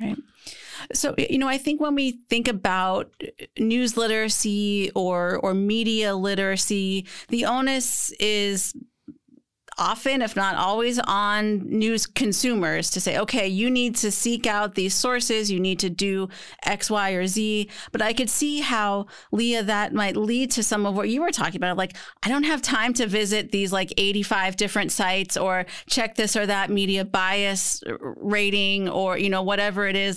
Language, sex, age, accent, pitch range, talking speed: English, female, 30-49, American, 190-230 Hz, 175 wpm